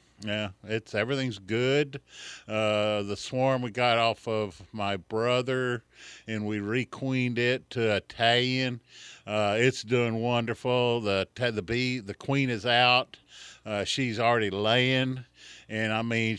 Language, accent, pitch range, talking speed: English, American, 105-125 Hz, 135 wpm